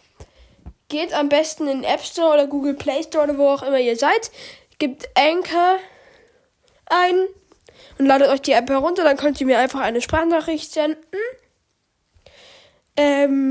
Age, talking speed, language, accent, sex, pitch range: 10-29, 150 wpm, German, German, female, 265-355 Hz